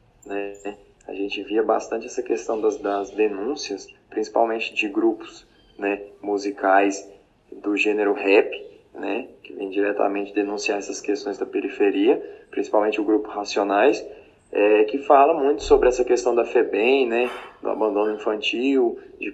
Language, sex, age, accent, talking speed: Portuguese, male, 20-39, Brazilian, 135 wpm